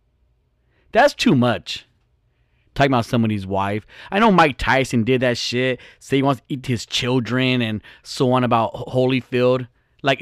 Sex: male